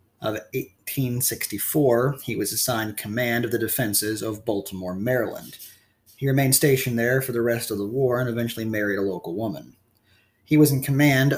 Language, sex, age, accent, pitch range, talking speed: English, male, 20-39, American, 105-130 Hz, 170 wpm